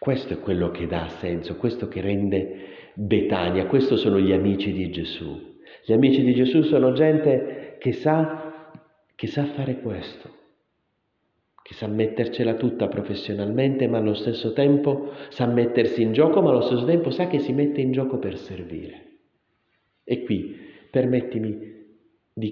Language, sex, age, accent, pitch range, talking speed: Italian, male, 40-59, native, 100-145 Hz, 150 wpm